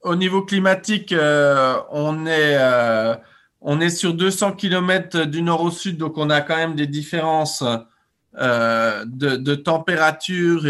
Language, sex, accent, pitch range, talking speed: English, male, French, 140-180 Hz, 150 wpm